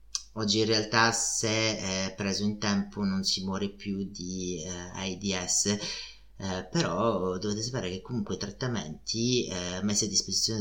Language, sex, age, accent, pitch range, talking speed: Italian, male, 30-49, native, 95-110 Hz, 145 wpm